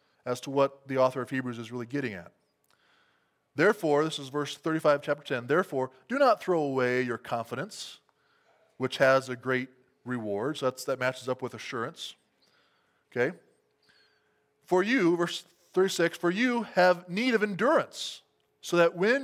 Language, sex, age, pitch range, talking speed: English, male, 20-39, 130-180 Hz, 155 wpm